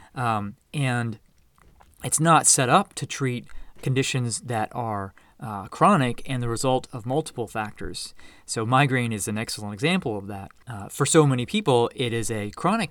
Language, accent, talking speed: English, American, 165 wpm